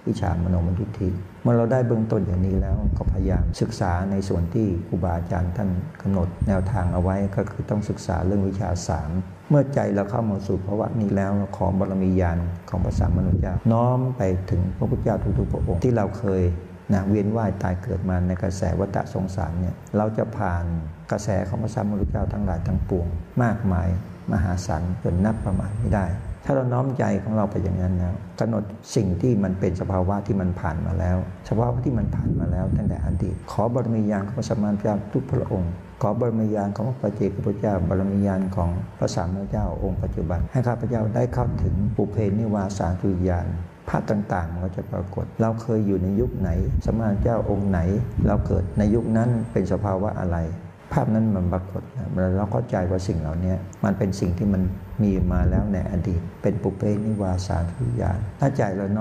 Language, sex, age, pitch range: Thai, male, 60-79, 95-110 Hz